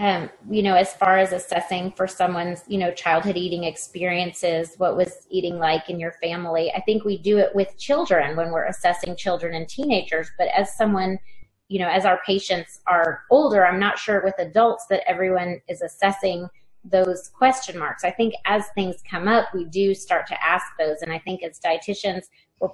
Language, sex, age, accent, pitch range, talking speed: English, female, 30-49, American, 175-200 Hz, 195 wpm